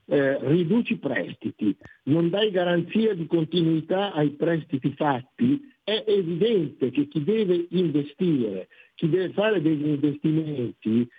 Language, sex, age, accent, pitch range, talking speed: Italian, male, 60-79, native, 130-175 Hz, 125 wpm